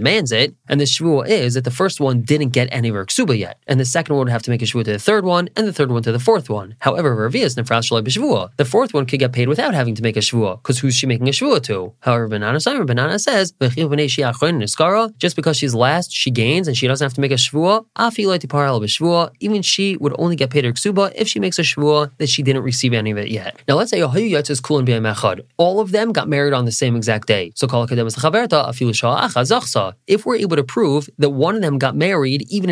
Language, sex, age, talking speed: English, male, 20-39, 230 wpm